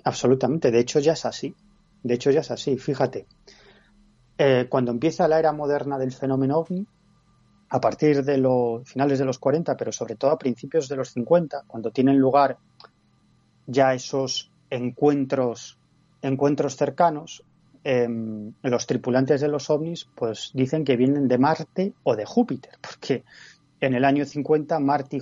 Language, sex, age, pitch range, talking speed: Spanish, male, 30-49, 125-160 Hz, 160 wpm